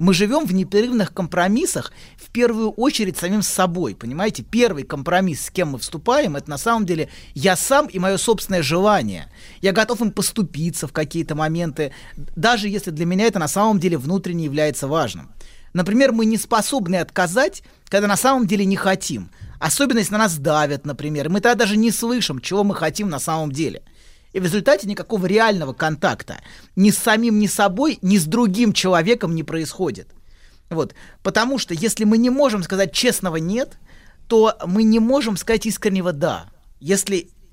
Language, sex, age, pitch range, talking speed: Russian, male, 30-49, 170-225 Hz, 175 wpm